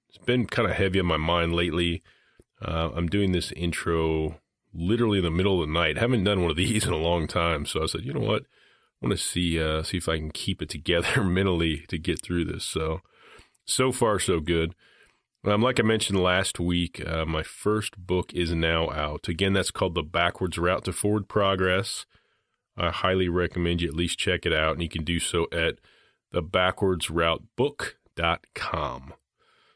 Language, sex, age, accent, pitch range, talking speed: English, male, 30-49, American, 85-95 Hz, 195 wpm